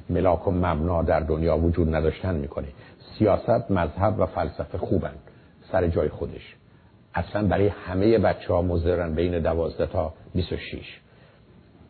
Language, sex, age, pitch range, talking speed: Persian, male, 50-69, 85-105 Hz, 120 wpm